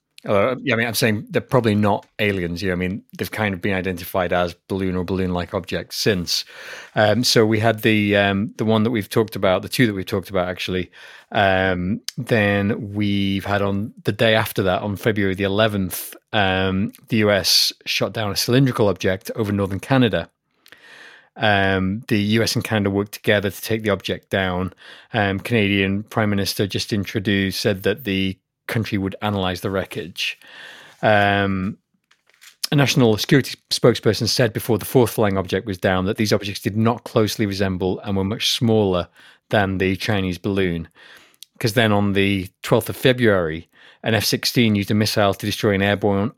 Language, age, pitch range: English, 30-49, 95-110 Hz